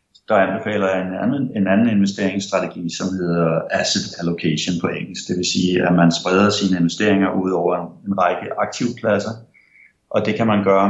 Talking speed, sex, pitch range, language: 175 wpm, male, 90-105 Hz, Danish